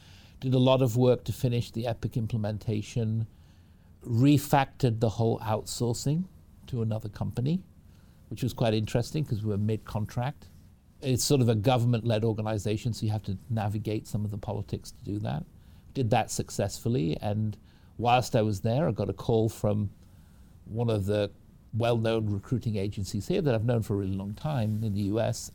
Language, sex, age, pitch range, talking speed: English, male, 50-69, 100-125 Hz, 175 wpm